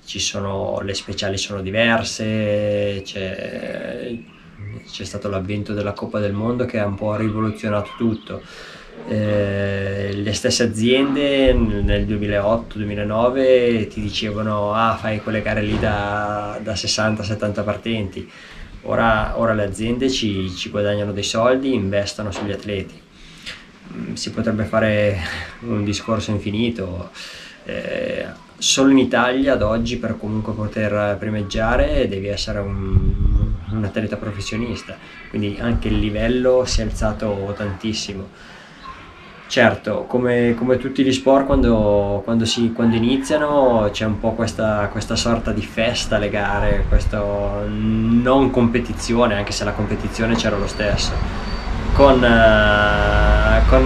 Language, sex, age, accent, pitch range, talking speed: Italian, male, 20-39, native, 100-115 Hz, 130 wpm